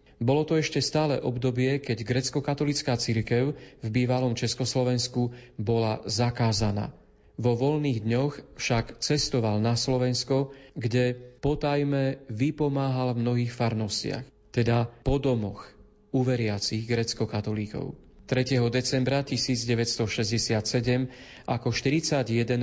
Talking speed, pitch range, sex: 90 wpm, 120-135 Hz, male